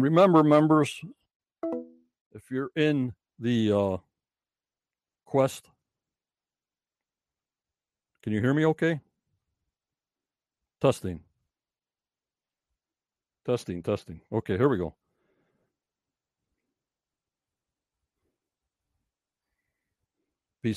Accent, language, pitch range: American, English, 95-140 Hz